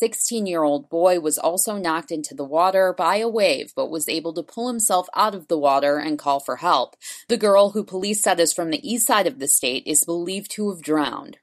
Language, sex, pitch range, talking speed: English, female, 165-235 Hz, 225 wpm